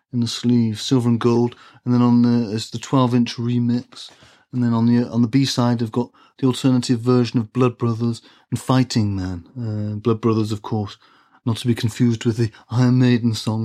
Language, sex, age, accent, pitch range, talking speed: English, male, 30-49, British, 115-135 Hz, 200 wpm